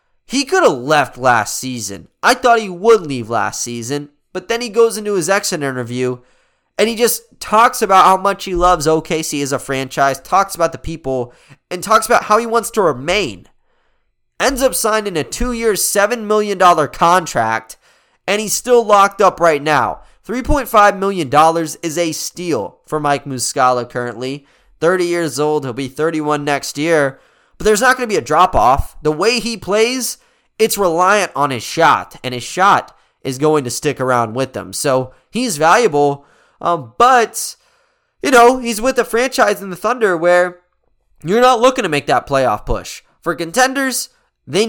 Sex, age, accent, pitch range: male, 20-39, American, 145-225 Hz